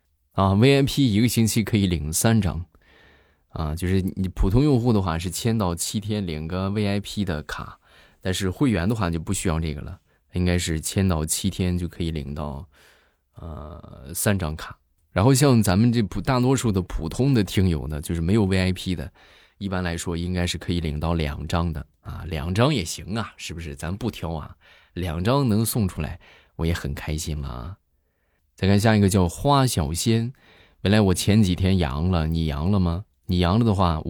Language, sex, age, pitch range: Chinese, male, 20-39, 80-105 Hz